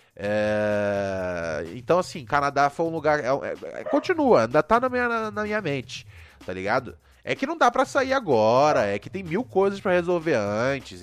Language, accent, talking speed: Portuguese, Brazilian, 165 wpm